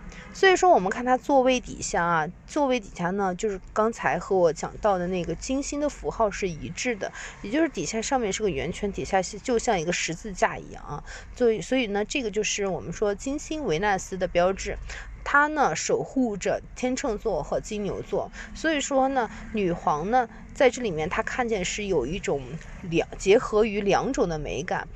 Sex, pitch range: female, 185-250 Hz